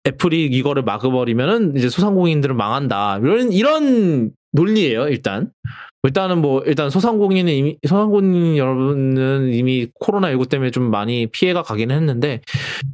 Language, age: English, 20-39